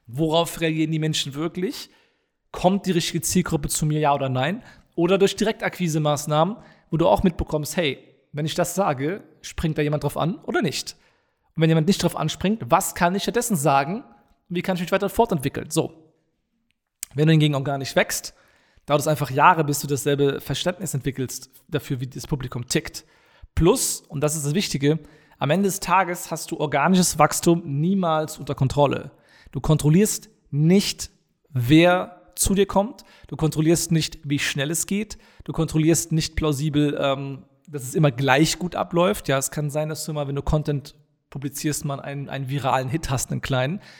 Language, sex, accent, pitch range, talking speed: German, male, German, 145-175 Hz, 180 wpm